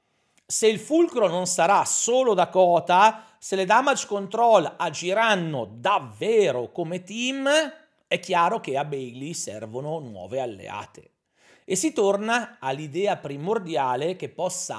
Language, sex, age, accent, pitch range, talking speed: Italian, male, 40-59, native, 150-220 Hz, 125 wpm